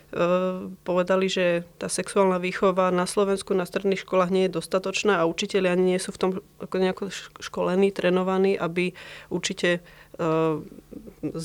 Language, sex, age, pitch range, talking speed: Slovak, female, 30-49, 175-195 Hz, 140 wpm